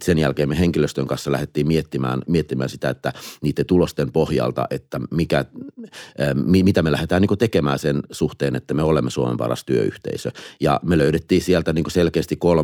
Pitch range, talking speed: 70-85 Hz, 160 wpm